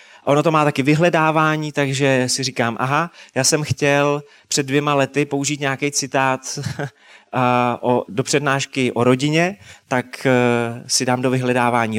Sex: male